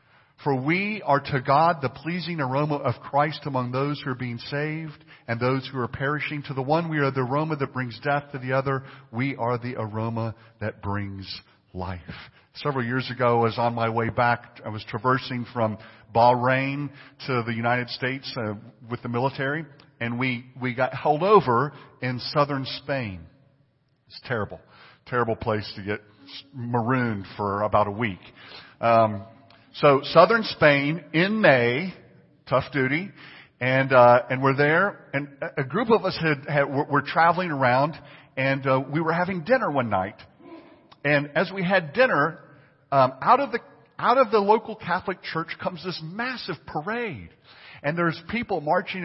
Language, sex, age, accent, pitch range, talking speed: English, male, 50-69, American, 125-160 Hz, 170 wpm